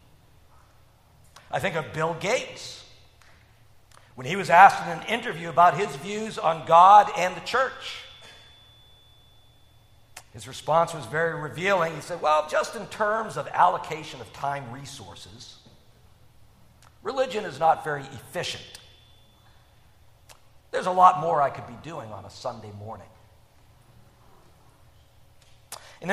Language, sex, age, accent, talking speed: English, male, 50-69, American, 125 wpm